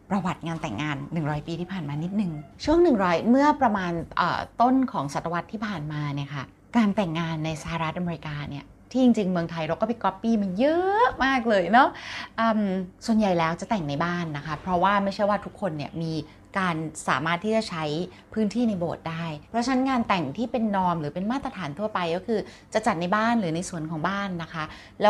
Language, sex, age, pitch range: Thai, female, 20-39, 175-245 Hz